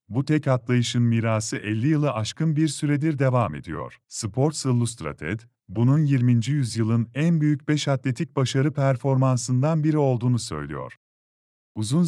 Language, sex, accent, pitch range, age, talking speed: Polish, male, Turkish, 115-145 Hz, 40-59, 130 wpm